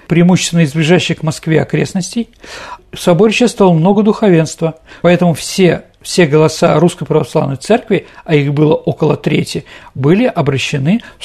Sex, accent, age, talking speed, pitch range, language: male, native, 50-69, 130 wpm, 150-185 Hz, Russian